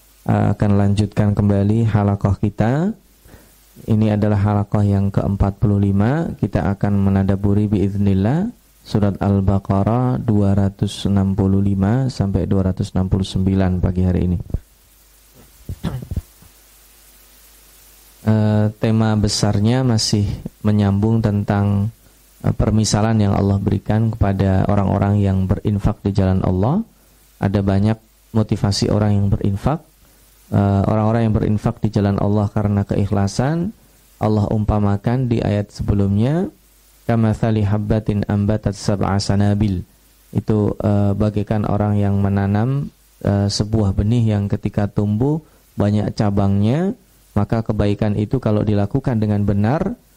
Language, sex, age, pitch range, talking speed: Indonesian, male, 20-39, 100-110 Hz, 100 wpm